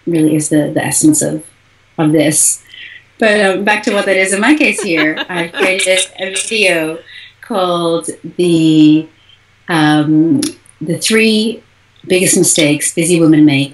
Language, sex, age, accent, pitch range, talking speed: English, female, 30-49, American, 145-185 Hz, 145 wpm